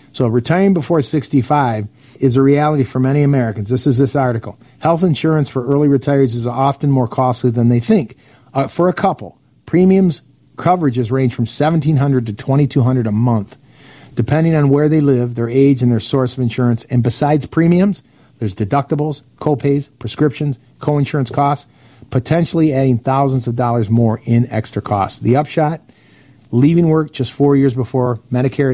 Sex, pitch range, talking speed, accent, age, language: male, 125-145 Hz, 165 wpm, American, 50-69, English